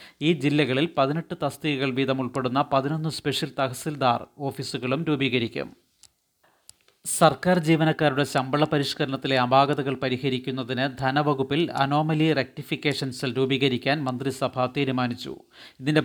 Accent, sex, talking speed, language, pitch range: native, male, 90 wpm, Malayalam, 130-150 Hz